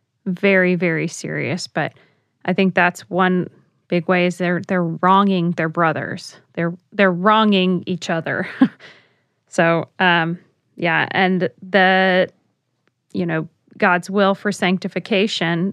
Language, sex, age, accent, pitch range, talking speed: English, female, 20-39, American, 175-200 Hz, 120 wpm